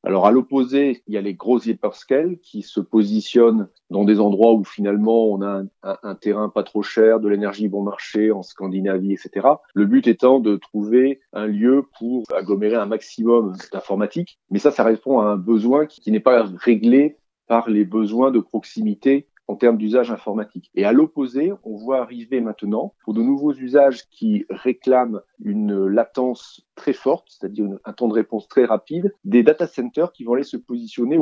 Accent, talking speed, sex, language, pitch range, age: French, 190 wpm, male, French, 105-135 Hz, 40-59